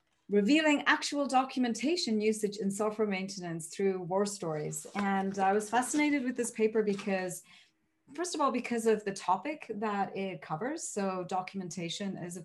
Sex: female